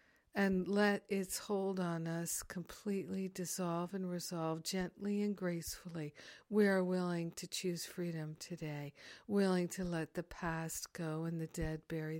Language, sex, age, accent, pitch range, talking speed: English, female, 60-79, American, 165-195 Hz, 150 wpm